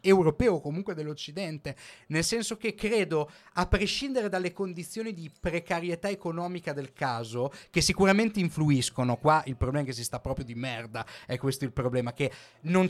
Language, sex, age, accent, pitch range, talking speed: Italian, male, 30-49, native, 145-195 Hz, 165 wpm